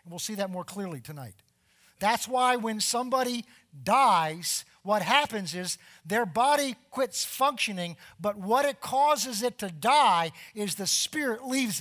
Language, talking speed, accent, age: English, 145 wpm, American, 50-69